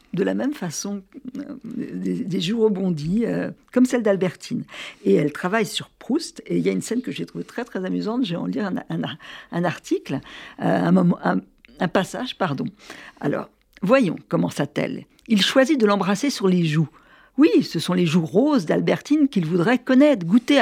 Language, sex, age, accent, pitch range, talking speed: French, female, 60-79, French, 180-250 Hz, 190 wpm